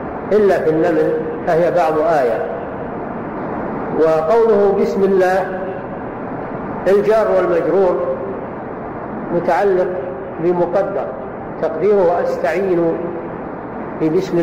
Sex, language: male, Arabic